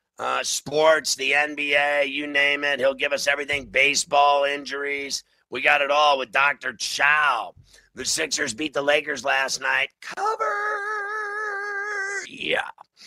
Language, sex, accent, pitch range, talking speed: English, male, American, 135-155 Hz, 135 wpm